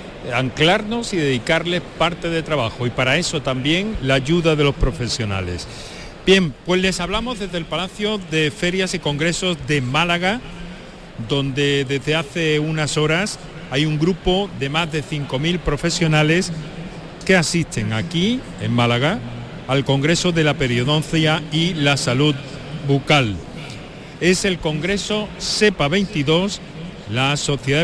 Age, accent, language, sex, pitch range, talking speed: 50-69, Spanish, Spanish, male, 135-175 Hz, 135 wpm